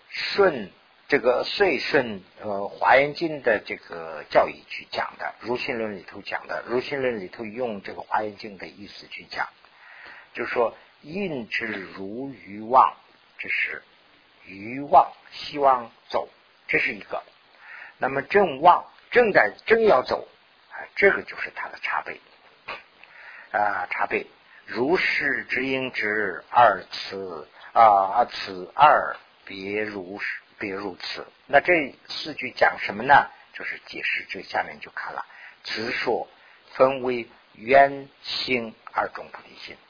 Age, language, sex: 50-69, Chinese, male